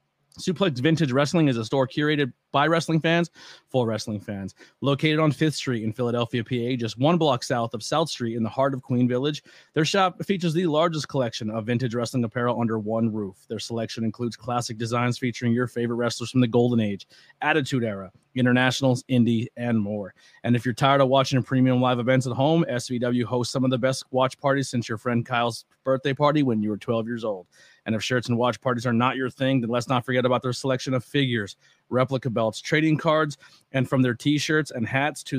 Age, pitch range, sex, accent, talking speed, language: 30-49, 115-135 Hz, male, American, 215 wpm, English